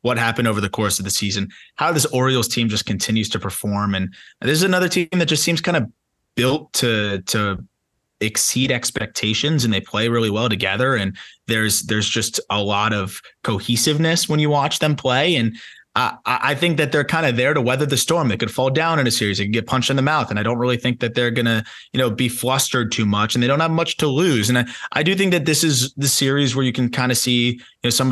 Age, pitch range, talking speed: 20-39, 110-145 Hz, 250 wpm